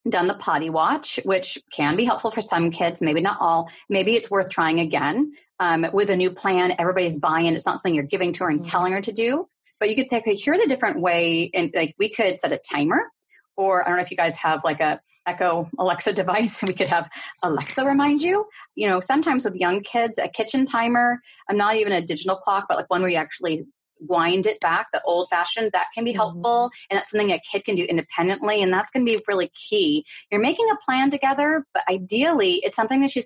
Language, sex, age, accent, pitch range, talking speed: English, female, 30-49, American, 170-225 Hz, 235 wpm